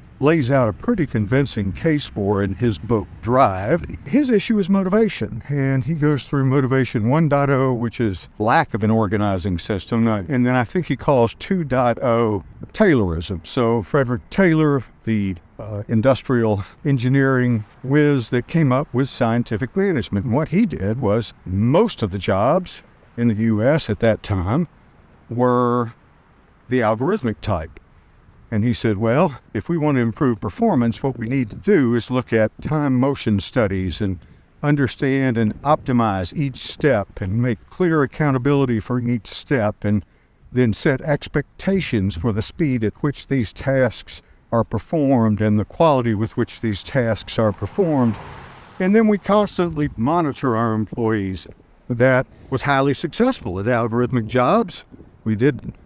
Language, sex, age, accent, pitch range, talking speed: English, male, 60-79, American, 110-140 Hz, 150 wpm